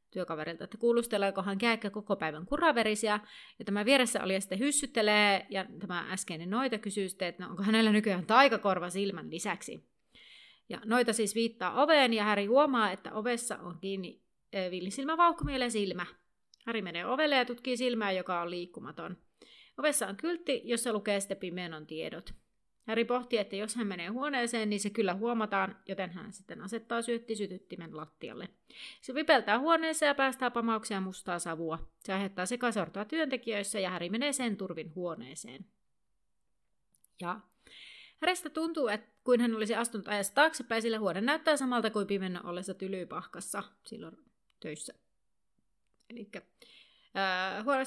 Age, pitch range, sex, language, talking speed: 30-49, 190-245 Hz, female, Finnish, 145 wpm